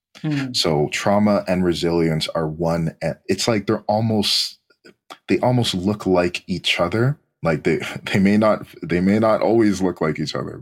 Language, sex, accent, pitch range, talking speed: English, male, American, 75-100 Hz, 165 wpm